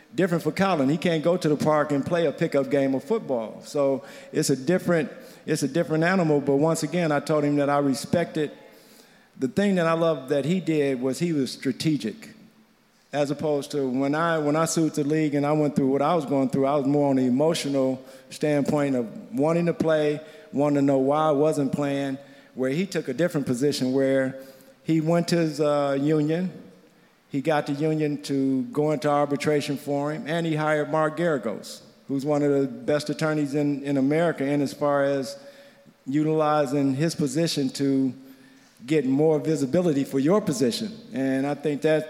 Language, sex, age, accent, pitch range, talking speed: English, male, 50-69, American, 140-160 Hz, 195 wpm